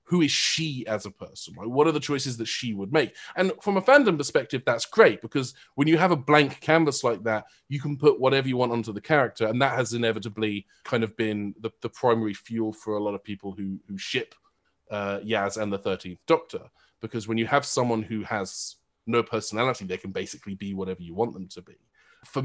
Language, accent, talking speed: English, British, 225 wpm